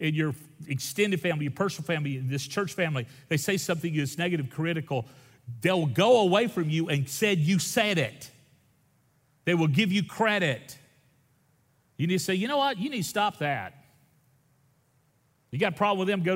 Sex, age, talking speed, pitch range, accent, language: male, 40-59, 185 wpm, 135-170 Hz, American, English